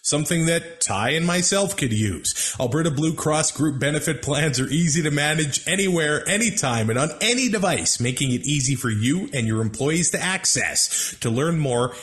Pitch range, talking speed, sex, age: 125-160 Hz, 180 wpm, male, 30-49